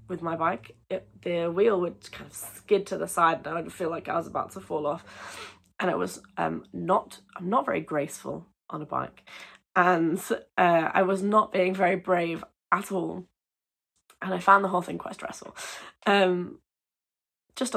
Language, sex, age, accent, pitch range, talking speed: English, female, 10-29, British, 180-220 Hz, 190 wpm